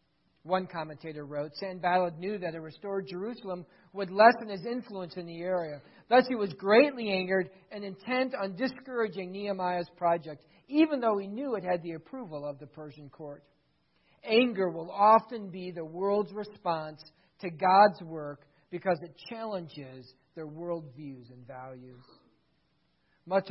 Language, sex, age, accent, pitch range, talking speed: English, male, 50-69, American, 165-230 Hz, 145 wpm